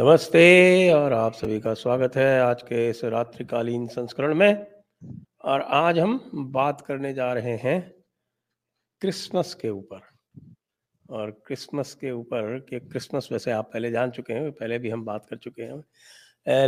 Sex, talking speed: male, 160 wpm